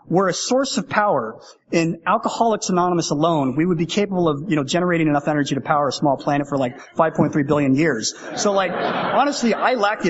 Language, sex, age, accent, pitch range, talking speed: English, male, 30-49, American, 145-185 Hz, 210 wpm